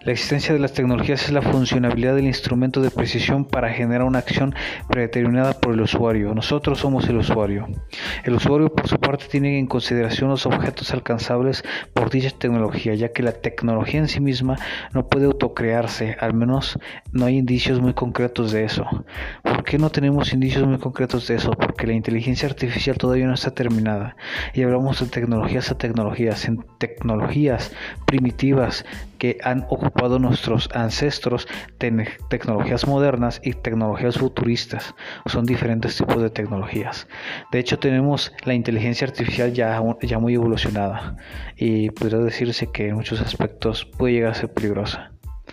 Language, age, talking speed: Spanish, 30-49, 160 wpm